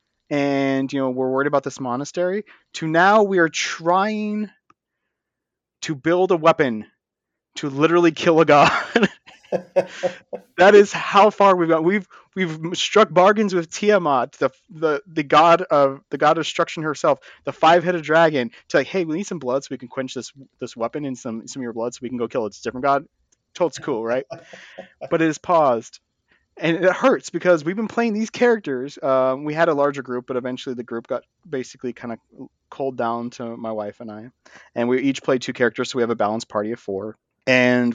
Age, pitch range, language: 30-49, 125-190 Hz, English